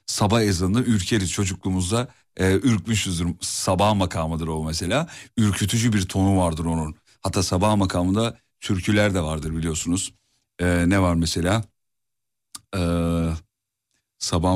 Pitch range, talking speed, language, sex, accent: 95-130 Hz, 115 wpm, Turkish, male, native